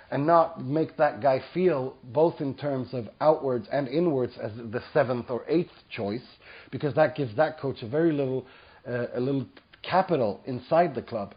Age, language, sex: 30-49, English, male